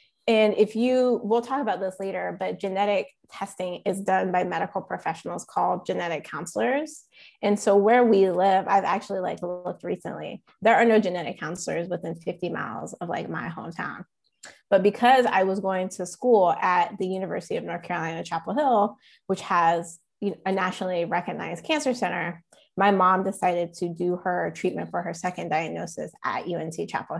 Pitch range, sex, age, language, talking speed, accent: 175-210 Hz, female, 20-39, English, 170 wpm, American